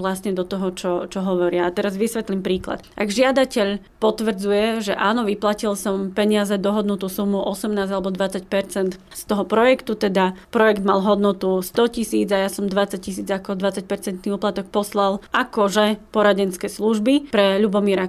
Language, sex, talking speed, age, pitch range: Slovak, female, 155 wpm, 30-49, 195-230 Hz